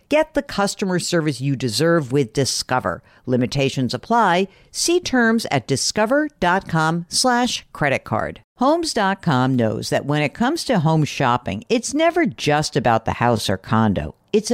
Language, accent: English, American